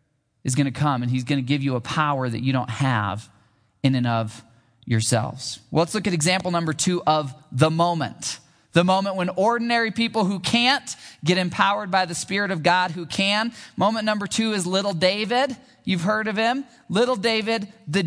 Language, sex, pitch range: English, male, 145-225 Hz